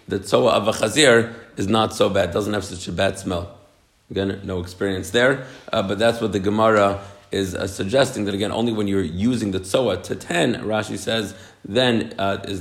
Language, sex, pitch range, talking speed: English, male, 95-115 Hz, 205 wpm